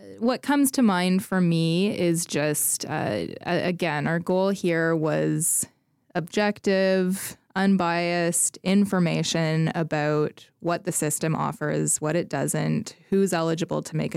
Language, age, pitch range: English, 20-39, 150-175 Hz